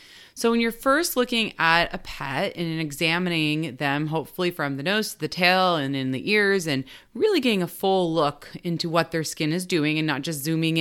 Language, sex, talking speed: English, female, 210 wpm